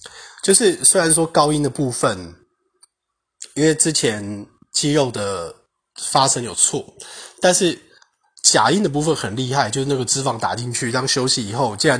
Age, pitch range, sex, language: 20-39, 115-140 Hz, male, Chinese